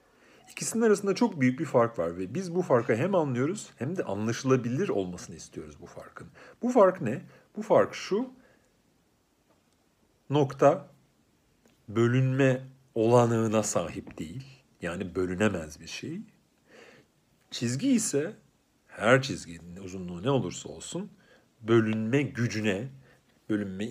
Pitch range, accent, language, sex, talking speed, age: 95-135 Hz, native, Turkish, male, 115 wpm, 50-69